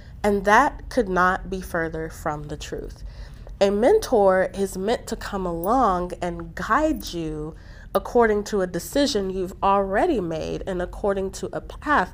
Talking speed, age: 155 wpm, 30-49